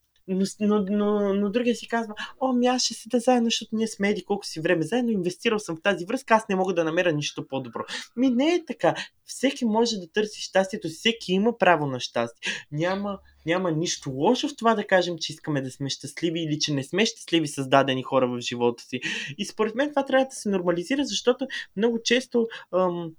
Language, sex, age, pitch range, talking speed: Bulgarian, male, 20-39, 155-215 Hz, 215 wpm